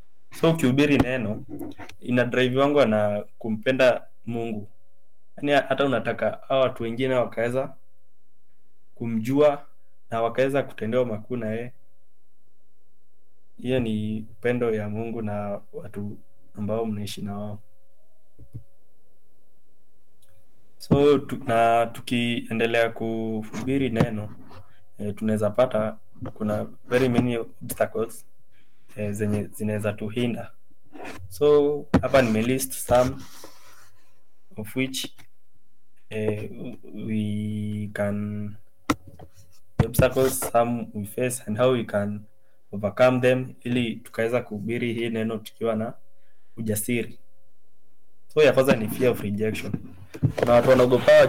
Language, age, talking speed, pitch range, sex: English, 20-39, 105 wpm, 105-125 Hz, male